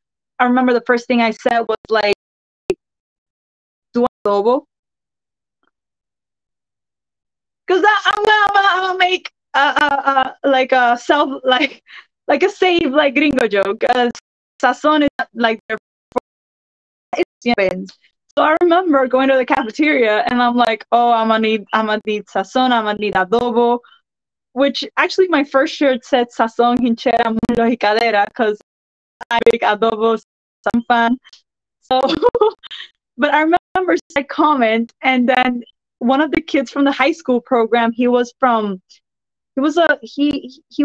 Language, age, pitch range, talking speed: English, 20-39, 235-300 Hz, 140 wpm